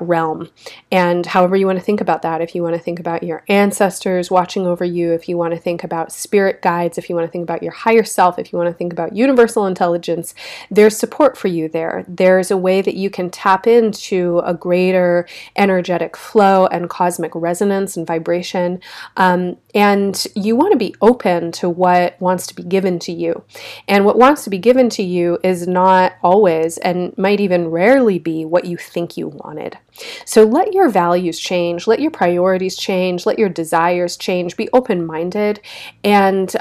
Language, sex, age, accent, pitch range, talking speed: English, female, 30-49, American, 175-200 Hz, 195 wpm